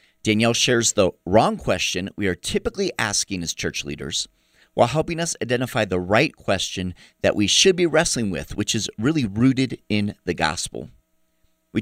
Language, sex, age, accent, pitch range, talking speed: English, male, 30-49, American, 95-135 Hz, 170 wpm